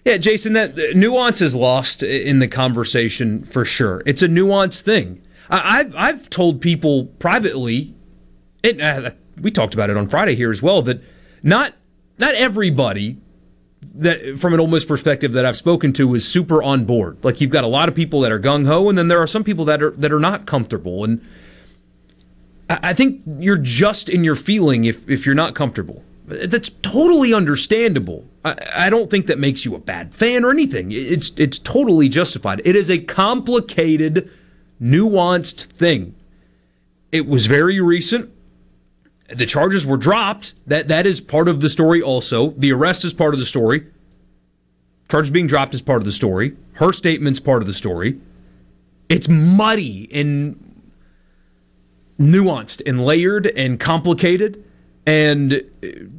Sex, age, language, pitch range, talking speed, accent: male, 30-49, English, 115-180 Hz, 165 wpm, American